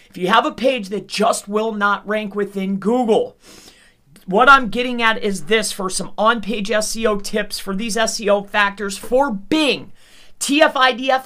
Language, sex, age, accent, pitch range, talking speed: English, male, 40-59, American, 210-265 Hz, 160 wpm